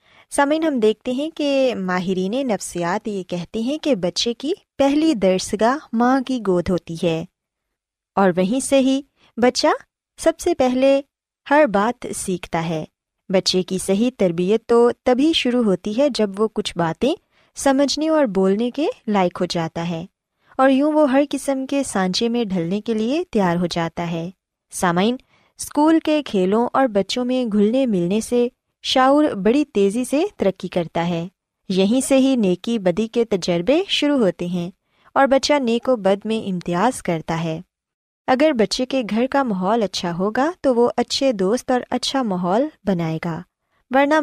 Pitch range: 185-270 Hz